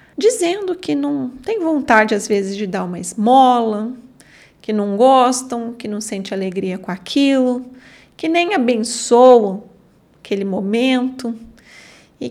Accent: Brazilian